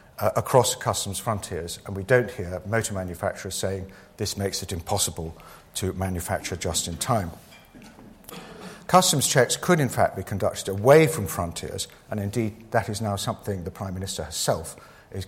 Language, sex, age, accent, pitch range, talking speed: English, male, 50-69, British, 95-125 Hz, 160 wpm